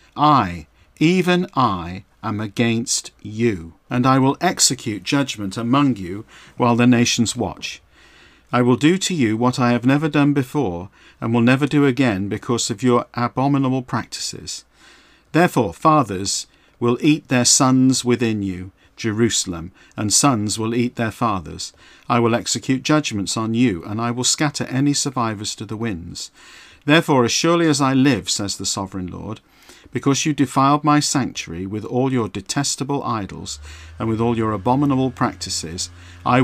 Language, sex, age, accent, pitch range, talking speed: English, male, 50-69, British, 95-135 Hz, 155 wpm